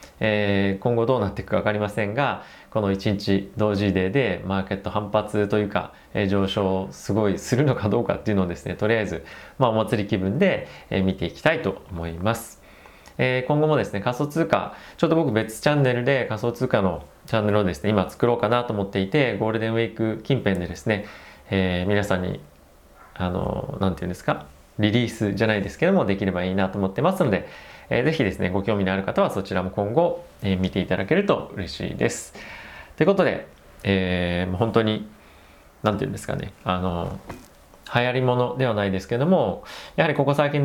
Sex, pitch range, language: male, 95-120 Hz, Japanese